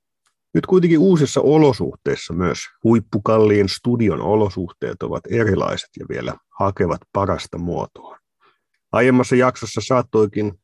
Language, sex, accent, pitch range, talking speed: Finnish, male, native, 95-125 Hz, 100 wpm